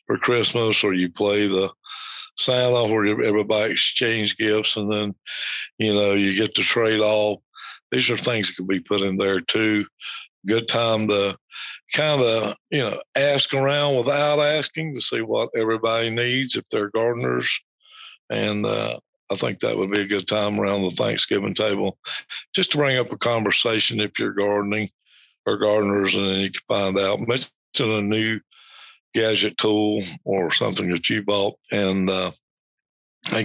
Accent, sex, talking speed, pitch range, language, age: American, male, 165 wpm, 95-110 Hz, English, 60-79